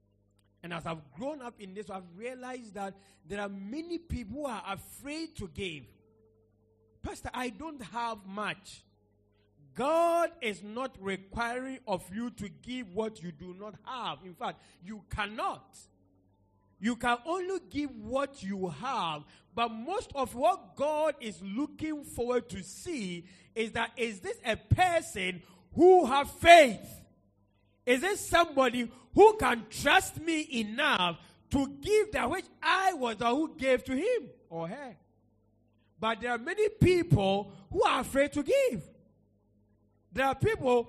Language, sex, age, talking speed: English, male, 40-59, 150 wpm